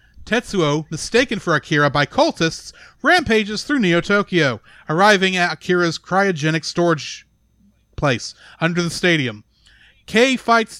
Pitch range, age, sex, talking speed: 160-220 Hz, 40-59, male, 110 wpm